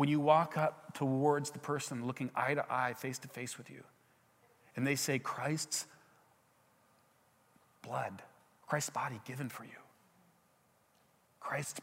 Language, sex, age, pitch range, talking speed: English, male, 40-59, 135-175 Hz, 135 wpm